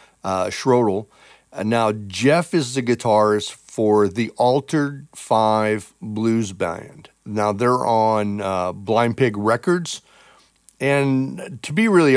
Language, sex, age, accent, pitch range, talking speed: English, male, 40-59, American, 105-130 Hz, 125 wpm